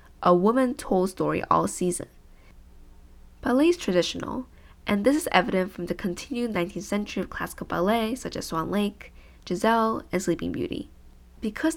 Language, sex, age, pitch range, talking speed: English, female, 10-29, 165-220 Hz, 155 wpm